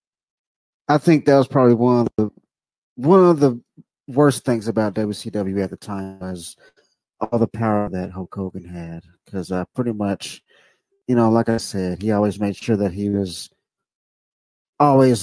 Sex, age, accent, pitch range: male, 30-49, American, 100-135 Hz